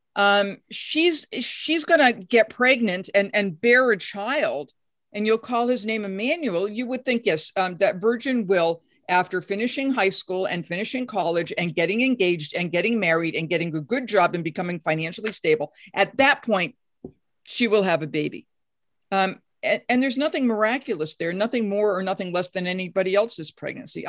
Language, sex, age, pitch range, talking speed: English, female, 50-69, 180-240 Hz, 180 wpm